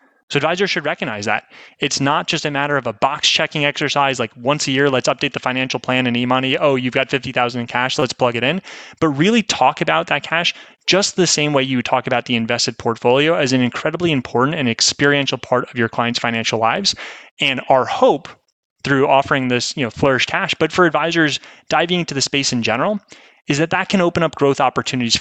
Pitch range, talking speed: 120-155 Hz, 220 wpm